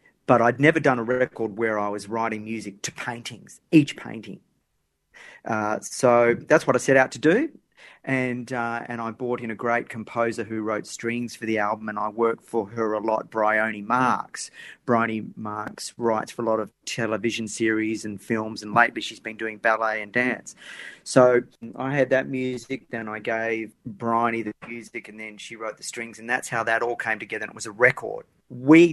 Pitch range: 110-125 Hz